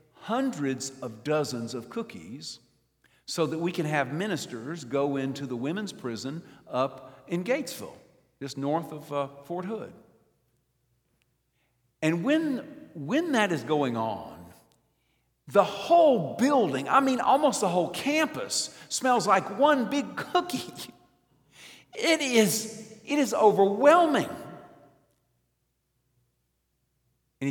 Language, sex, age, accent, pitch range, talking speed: English, male, 50-69, American, 120-175 Hz, 115 wpm